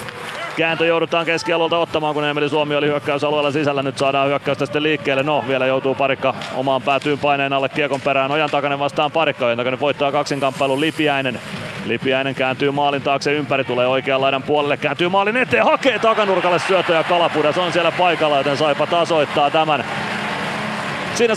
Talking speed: 165 wpm